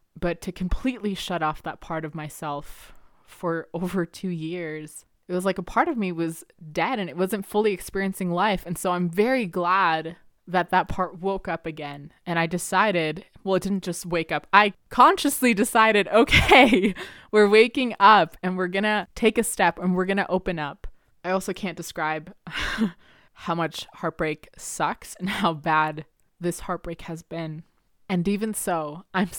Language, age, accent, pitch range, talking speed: English, 20-39, American, 160-195 Hz, 180 wpm